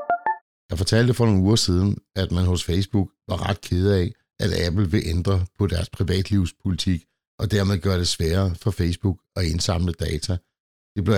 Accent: native